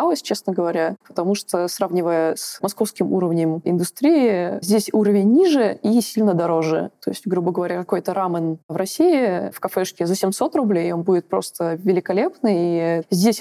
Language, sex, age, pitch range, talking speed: Russian, female, 20-39, 180-235 Hz, 150 wpm